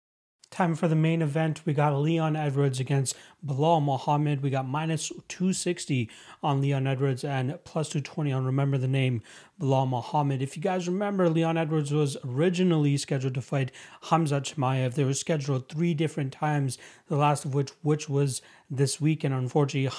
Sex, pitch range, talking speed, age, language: male, 135-155 Hz, 170 wpm, 30-49, English